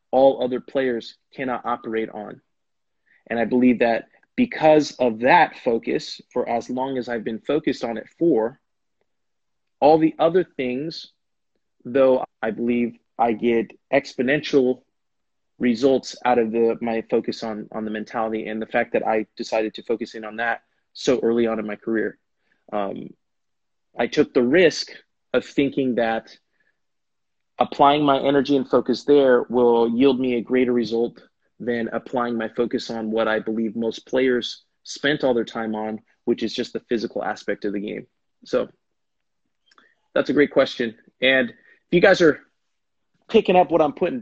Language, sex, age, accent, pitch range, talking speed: English, male, 30-49, American, 115-135 Hz, 165 wpm